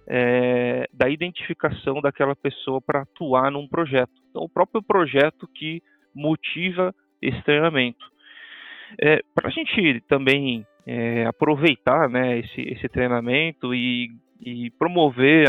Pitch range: 125-145 Hz